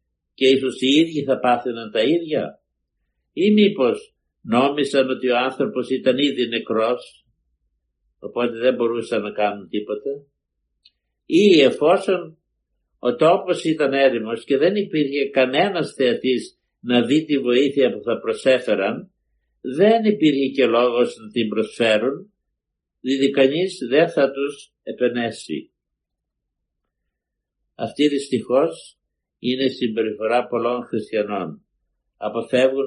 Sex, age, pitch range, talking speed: male, 60-79, 115-140 Hz, 110 wpm